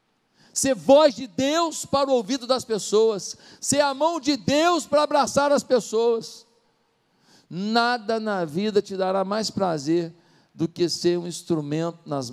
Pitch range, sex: 180-265 Hz, male